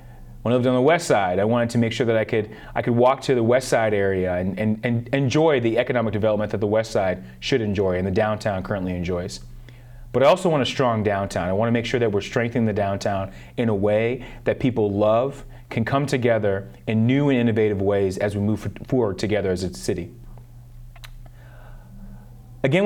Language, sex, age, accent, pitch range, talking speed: English, male, 30-49, American, 105-125 Hz, 215 wpm